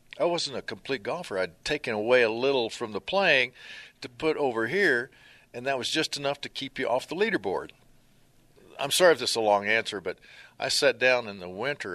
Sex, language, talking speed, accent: male, English, 215 wpm, American